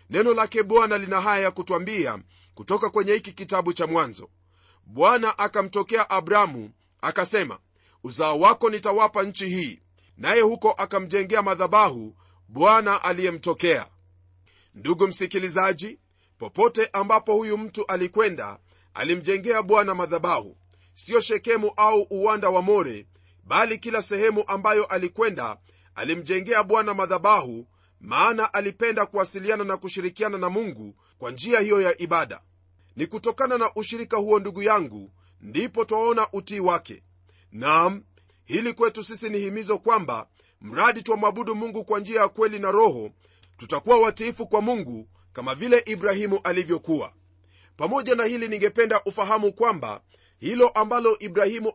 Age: 40-59